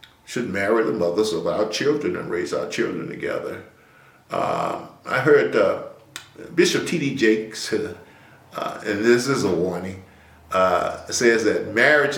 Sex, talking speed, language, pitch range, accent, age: male, 150 wpm, English, 85-120 Hz, American, 50-69